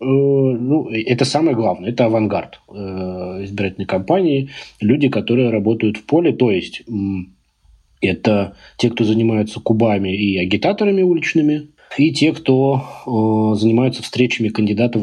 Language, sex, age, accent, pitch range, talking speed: Russian, male, 20-39, native, 105-125 Hz, 125 wpm